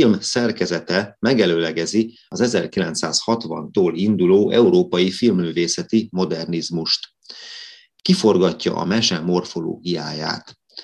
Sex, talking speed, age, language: male, 80 wpm, 30-49, Hungarian